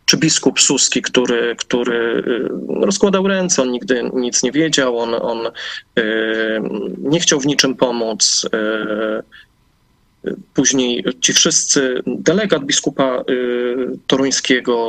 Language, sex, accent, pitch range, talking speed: Polish, male, native, 125-160 Hz, 115 wpm